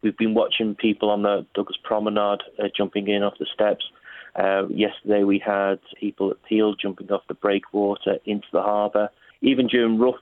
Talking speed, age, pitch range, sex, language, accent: 180 wpm, 30-49, 100-115 Hz, male, English, British